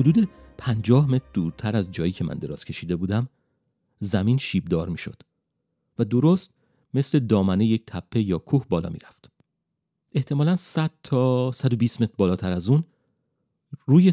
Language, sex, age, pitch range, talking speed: Persian, male, 40-59, 95-130 Hz, 150 wpm